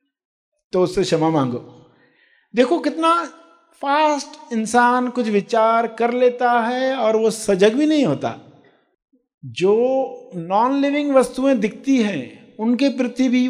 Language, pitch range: Hindi, 175-245 Hz